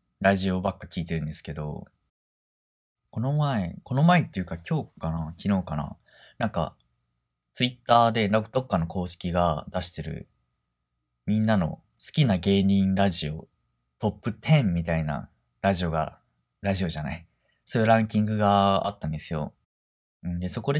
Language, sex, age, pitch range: Japanese, male, 20-39, 75-115 Hz